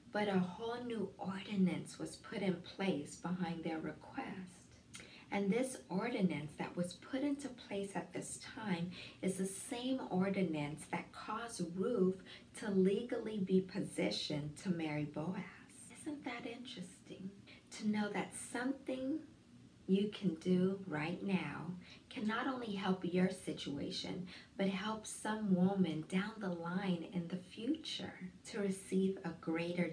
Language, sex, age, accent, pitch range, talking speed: English, female, 50-69, American, 165-200 Hz, 140 wpm